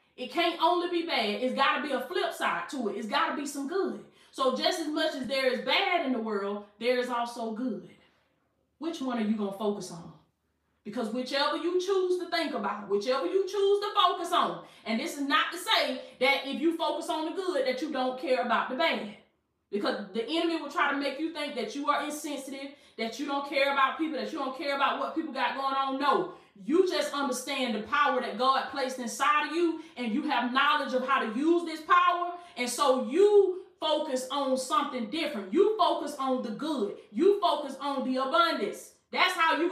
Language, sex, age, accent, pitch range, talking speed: English, female, 20-39, American, 255-335 Hz, 220 wpm